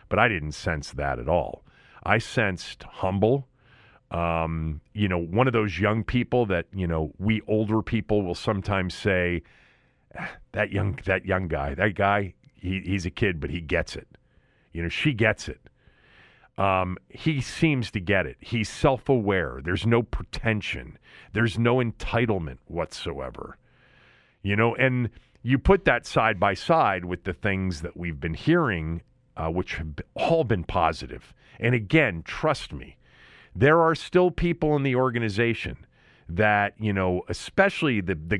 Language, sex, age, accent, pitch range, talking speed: English, male, 40-59, American, 90-120 Hz, 160 wpm